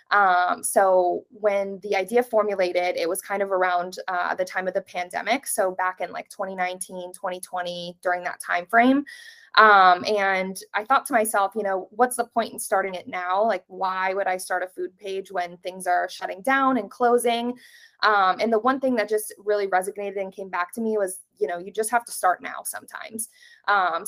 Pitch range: 185-225 Hz